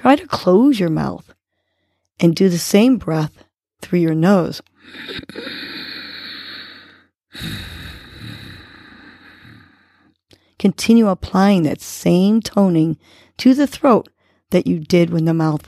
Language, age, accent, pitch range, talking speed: English, 40-59, American, 155-205 Hz, 105 wpm